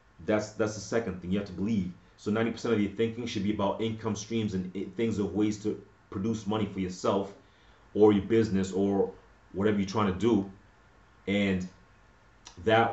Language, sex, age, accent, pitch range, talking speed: English, male, 30-49, American, 95-110 Hz, 180 wpm